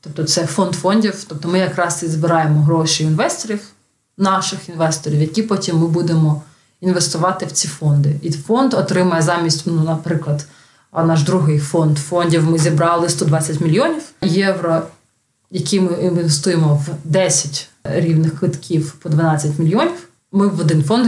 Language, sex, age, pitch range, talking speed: Ukrainian, female, 20-39, 150-175 Hz, 140 wpm